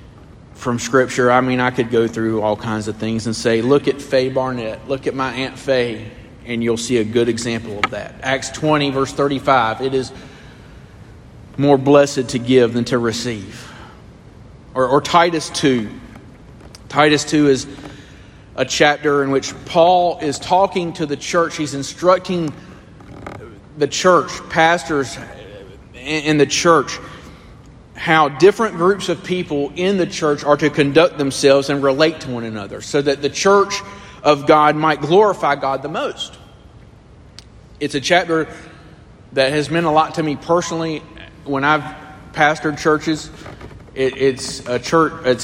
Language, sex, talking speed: English, male, 150 wpm